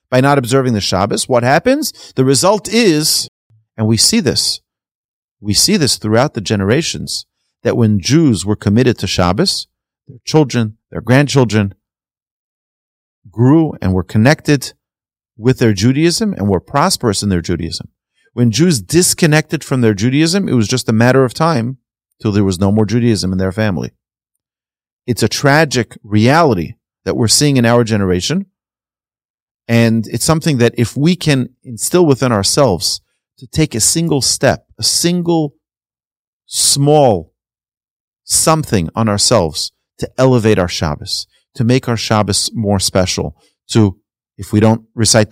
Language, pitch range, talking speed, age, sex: English, 105-145 Hz, 150 wpm, 40-59, male